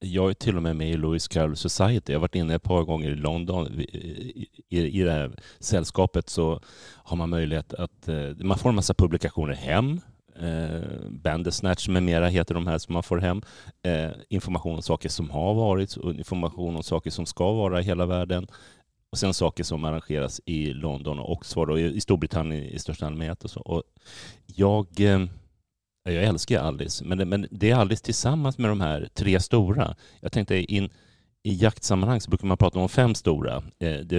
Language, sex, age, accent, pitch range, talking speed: Swedish, male, 30-49, native, 80-95 Hz, 175 wpm